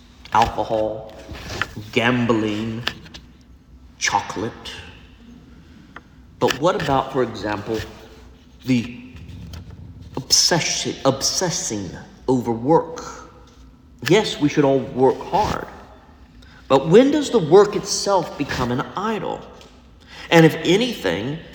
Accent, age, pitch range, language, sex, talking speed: American, 50-69, 115-165 Hz, English, male, 85 wpm